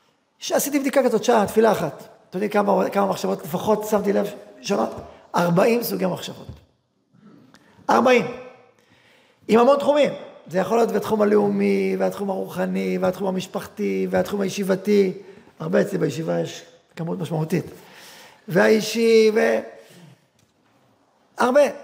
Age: 40-59